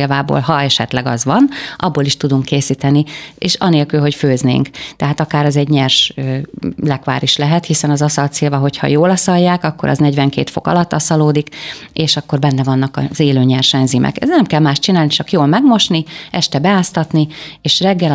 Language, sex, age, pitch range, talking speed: Hungarian, female, 30-49, 140-170 Hz, 170 wpm